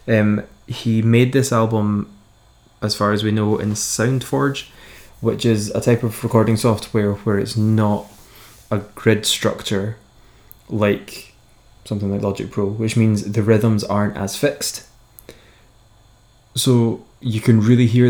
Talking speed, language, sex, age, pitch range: 140 wpm, English, male, 20-39, 105-120 Hz